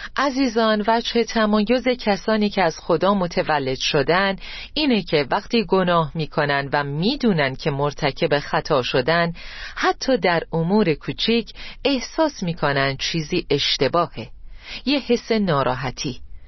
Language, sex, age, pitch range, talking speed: Persian, female, 40-59, 155-230 Hz, 115 wpm